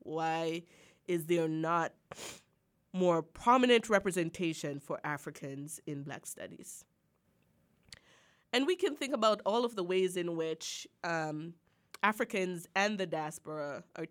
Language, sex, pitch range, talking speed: English, female, 160-220 Hz, 125 wpm